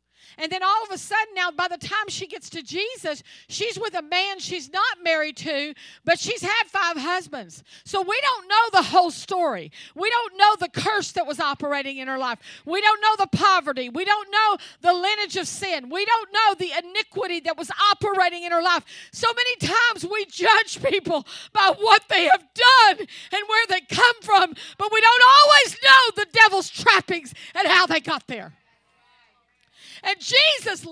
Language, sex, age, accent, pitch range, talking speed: English, female, 50-69, American, 330-430 Hz, 190 wpm